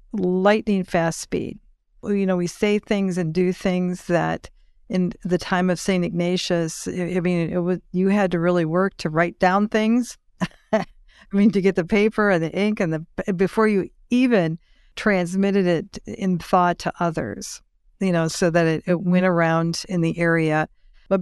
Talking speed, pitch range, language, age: 180 wpm, 170-200 Hz, English, 50-69